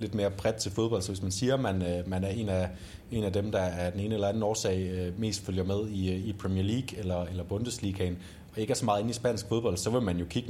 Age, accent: 30-49, native